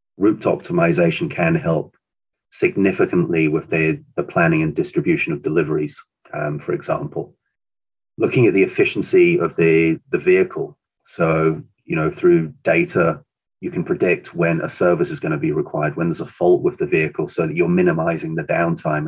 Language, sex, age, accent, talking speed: English, male, 30-49, British, 165 wpm